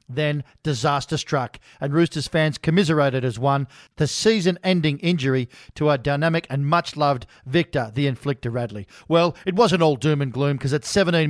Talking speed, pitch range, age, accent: 165 wpm, 140-175 Hz, 40-59, Australian